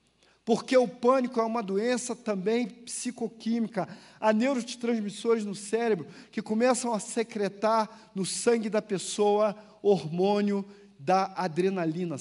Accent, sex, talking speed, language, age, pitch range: Brazilian, male, 115 wpm, Portuguese, 40-59, 180-215 Hz